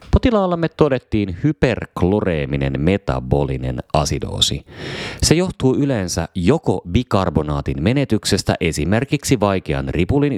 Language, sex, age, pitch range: Finnish, male, 30-49, 80-115 Hz